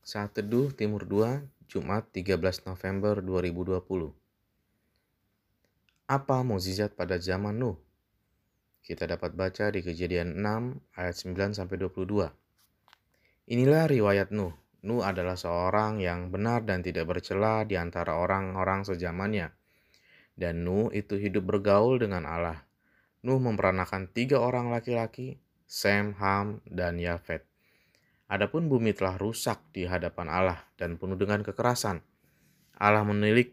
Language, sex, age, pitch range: Indonesian, male, 20-39, 90-110 Hz